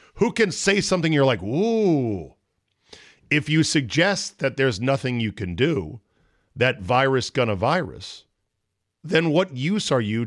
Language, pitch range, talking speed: English, 100-140 Hz, 145 wpm